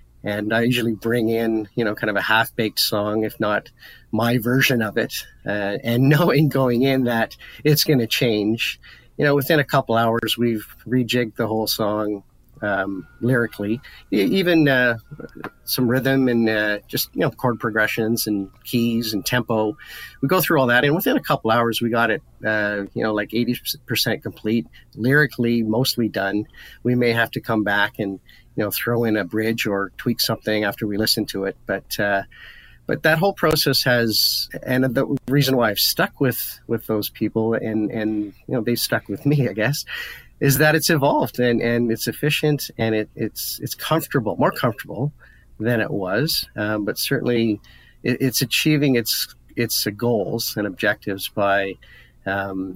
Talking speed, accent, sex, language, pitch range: 180 wpm, American, male, English, 105-125 Hz